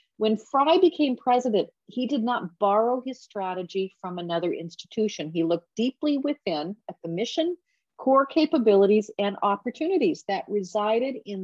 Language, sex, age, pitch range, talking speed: English, female, 50-69, 195-255 Hz, 140 wpm